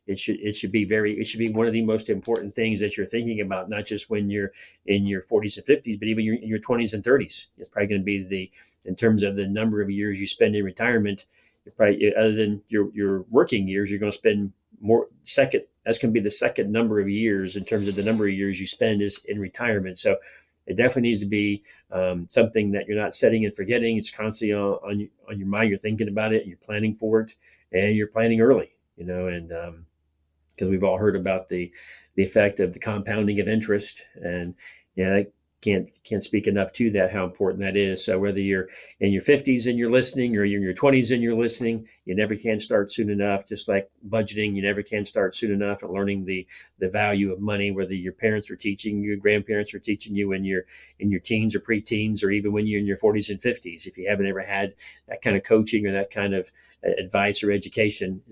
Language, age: English, 40-59